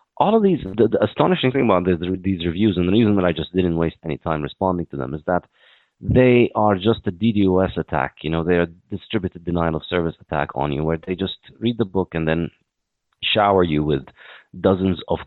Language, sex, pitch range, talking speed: English, male, 75-95 Hz, 220 wpm